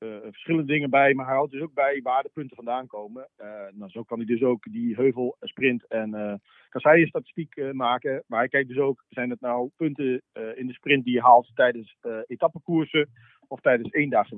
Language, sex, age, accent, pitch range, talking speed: Dutch, male, 40-59, Dutch, 120-160 Hz, 215 wpm